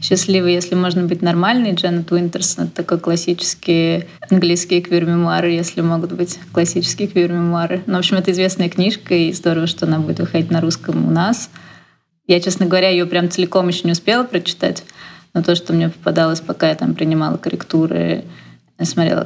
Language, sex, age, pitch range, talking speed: Russian, female, 20-39, 165-185 Hz, 170 wpm